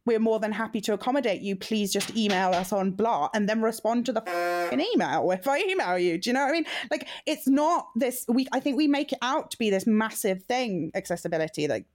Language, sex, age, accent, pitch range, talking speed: English, female, 20-39, British, 195-265 Hz, 240 wpm